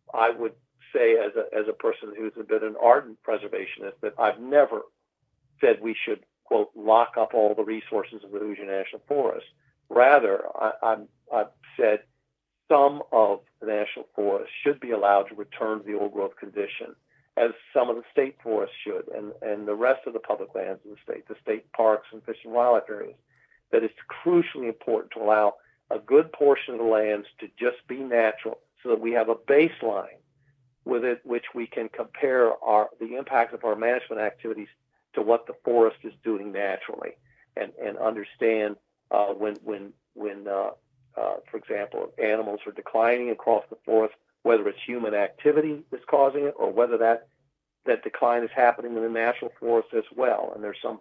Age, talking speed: 50-69, 180 wpm